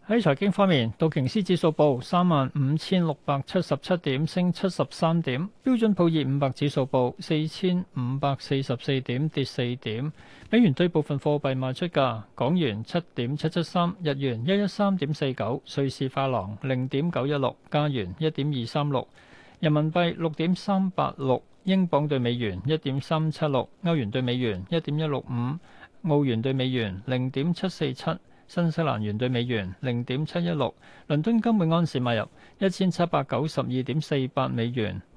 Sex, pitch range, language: male, 130-170 Hz, Chinese